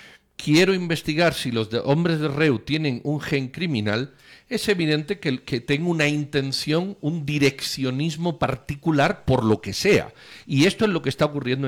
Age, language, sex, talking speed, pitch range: 50-69, Spanish, male, 170 wpm, 120-160 Hz